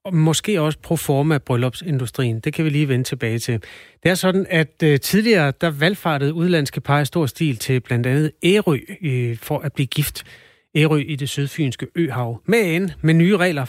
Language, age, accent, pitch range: Danish, 30-49, native, 130-165 Hz